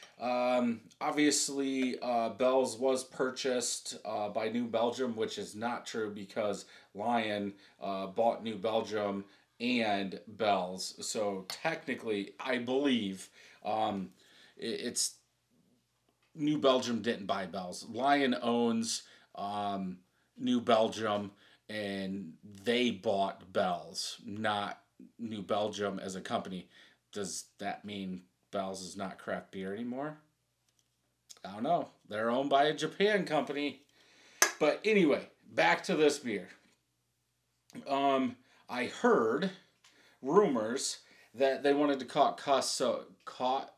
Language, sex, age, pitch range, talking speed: English, male, 30-49, 100-135 Hz, 115 wpm